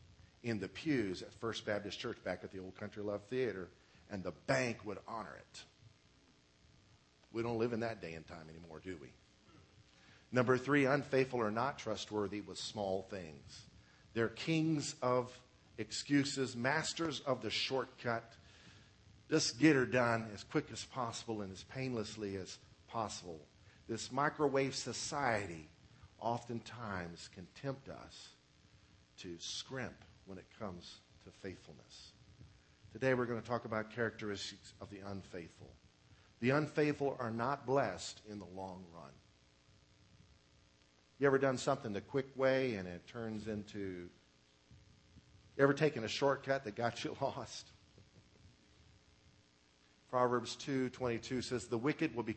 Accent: American